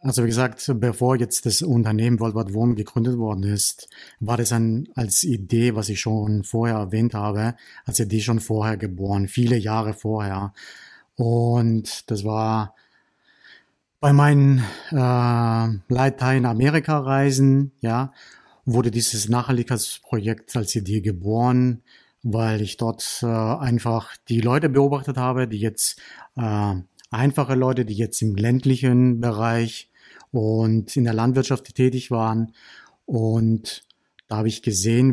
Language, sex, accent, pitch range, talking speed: German, male, German, 110-125 Hz, 130 wpm